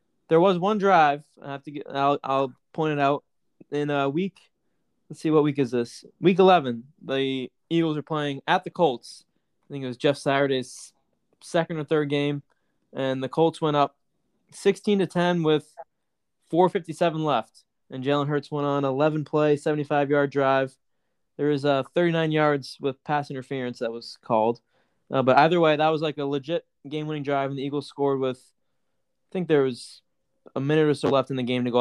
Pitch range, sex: 135-165 Hz, male